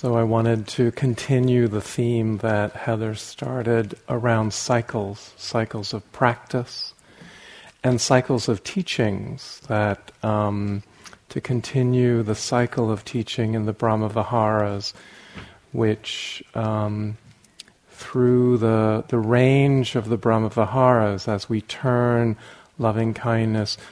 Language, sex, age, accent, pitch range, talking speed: English, male, 40-59, American, 105-120 Hz, 110 wpm